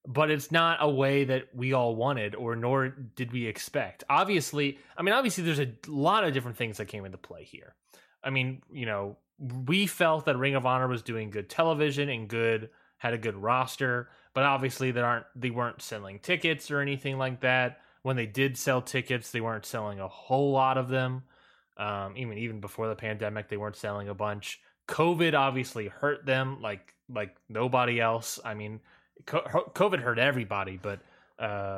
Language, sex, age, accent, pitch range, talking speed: English, male, 20-39, American, 110-140 Hz, 190 wpm